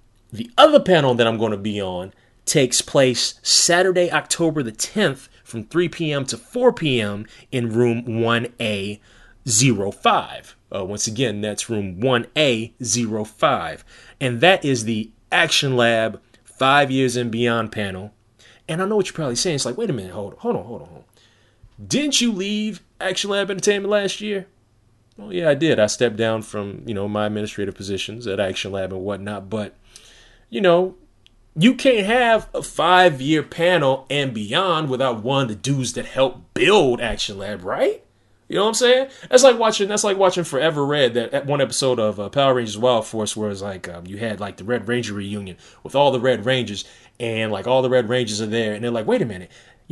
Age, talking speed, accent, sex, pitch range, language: 30-49, 190 wpm, American, male, 110-160 Hz, English